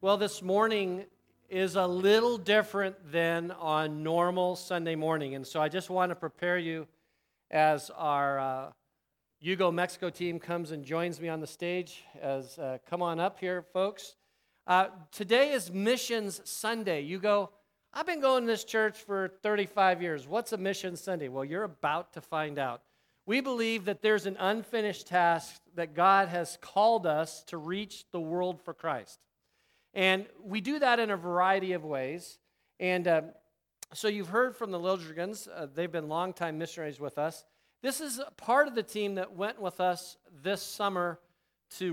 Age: 50-69